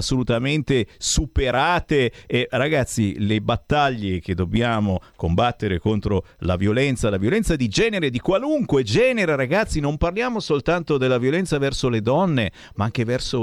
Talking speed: 145 wpm